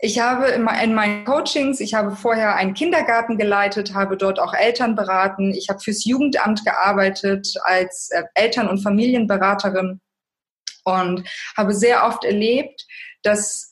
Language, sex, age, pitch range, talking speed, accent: German, female, 20-39, 195-245 Hz, 140 wpm, German